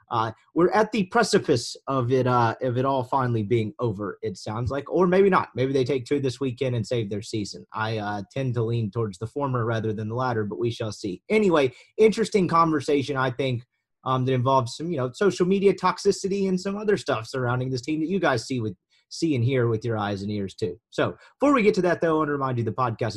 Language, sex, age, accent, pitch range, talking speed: English, male, 30-49, American, 120-170 Hz, 245 wpm